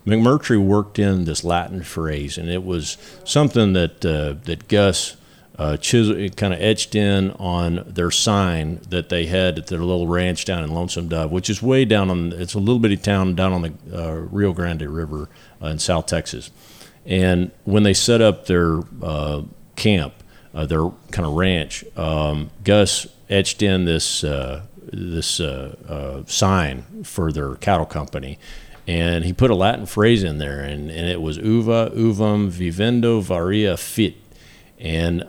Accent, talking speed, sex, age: American, 170 wpm, male, 50-69